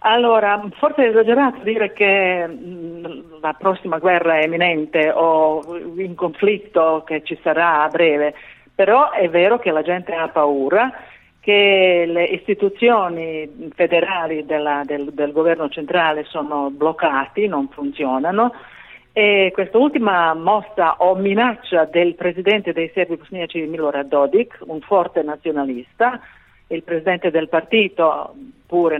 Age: 50-69